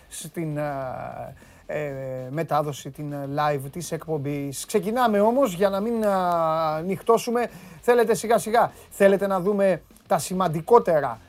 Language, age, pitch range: Greek, 30-49, 155-225 Hz